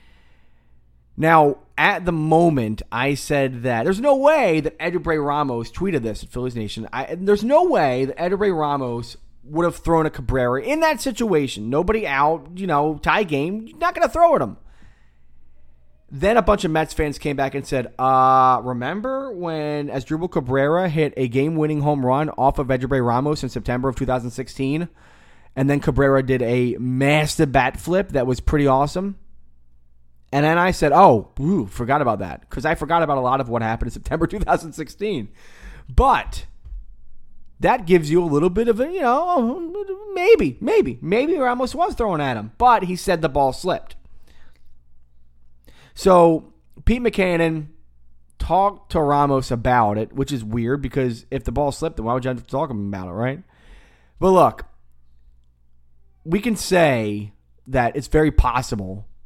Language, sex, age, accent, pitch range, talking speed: English, male, 20-39, American, 115-170 Hz, 170 wpm